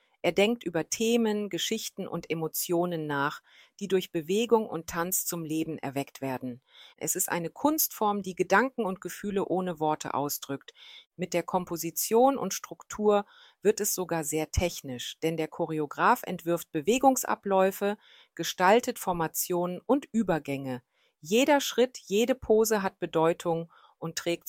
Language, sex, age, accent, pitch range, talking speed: German, female, 40-59, German, 165-210 Hz, 135 wpm